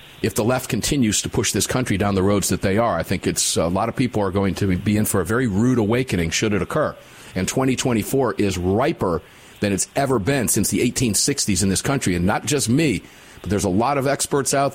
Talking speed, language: 240 wpm, English